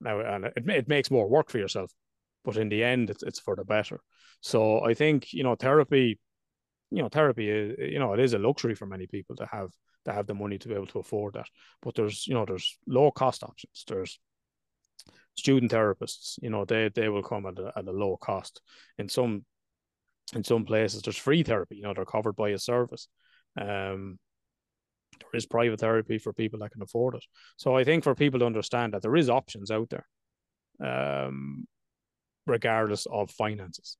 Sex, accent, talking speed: male, Irish, 205 wpm